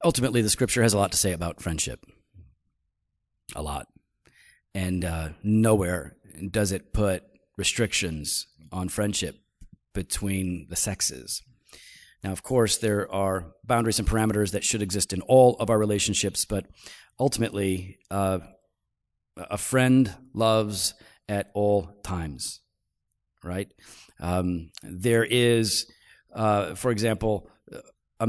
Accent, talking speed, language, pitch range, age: American, 120 wpm, English, 95-115 Hz, 40-59